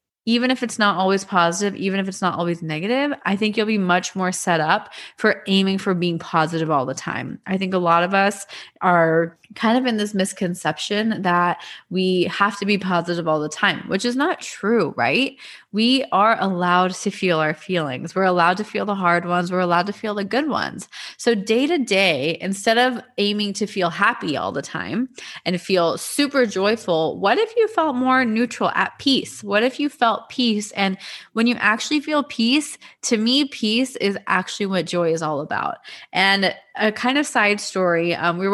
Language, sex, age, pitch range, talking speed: English, female, 20-39, 180-235 Hz, 200 wpm